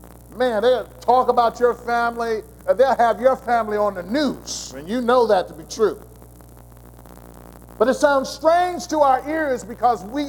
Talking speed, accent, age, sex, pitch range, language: 175 wpm, American, 50-69, male, 165-235 Hz, English